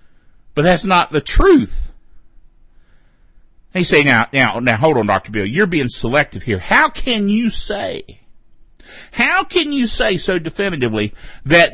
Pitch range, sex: 120-180 Hz, male